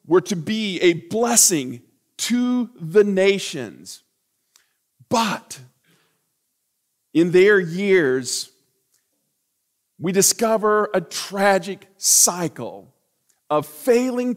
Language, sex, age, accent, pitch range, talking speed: English, male, 40-59, American, 180-255 Hz, 80 wpm